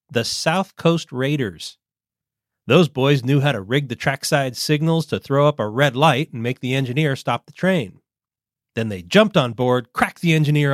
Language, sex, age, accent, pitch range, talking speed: English, male, 40-59, American, 125-170 Hz, 190 wpm